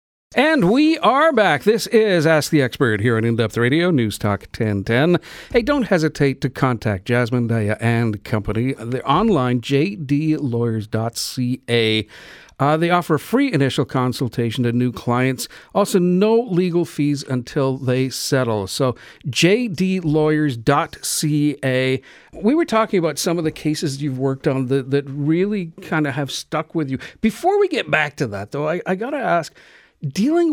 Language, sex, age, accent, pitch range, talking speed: English, male, 50-69, American, 125-175 Hz, 155 wpm